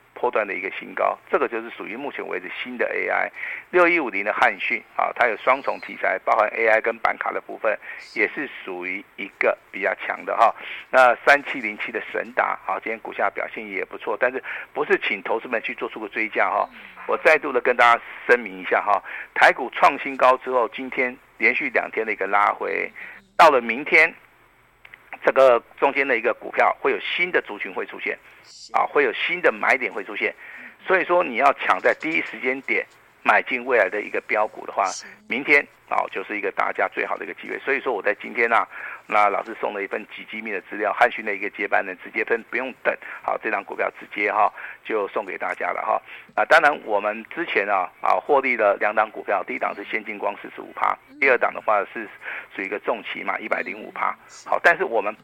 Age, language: 50-69, Chinese